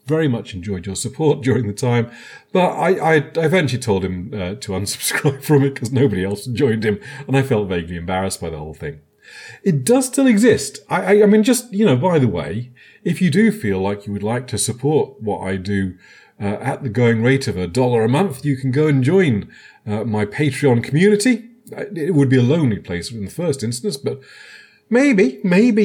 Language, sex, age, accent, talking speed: English, male, 40-59, British, 215 wpm